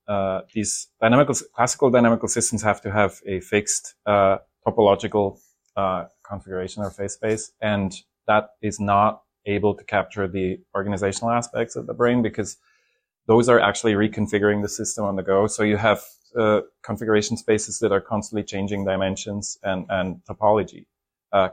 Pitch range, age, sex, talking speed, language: 100-115 Hz, 30-49, male, 155 wpm, English